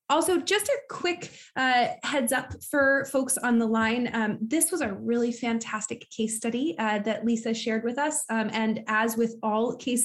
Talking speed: 190 wpm